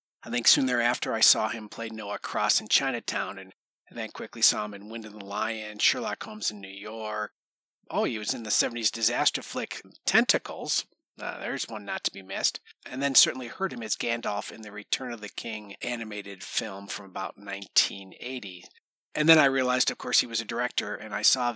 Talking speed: 205 wpm